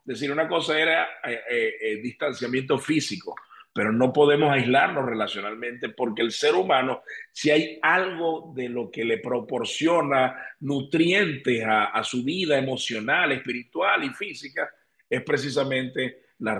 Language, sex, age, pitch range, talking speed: Spanish, male, 50-69, 125-155 Hz, 135 wpm